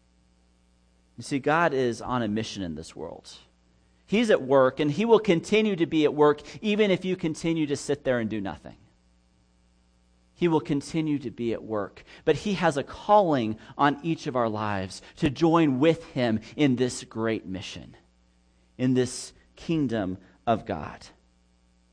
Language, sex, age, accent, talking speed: English, male, 40-59, American, 165 wpm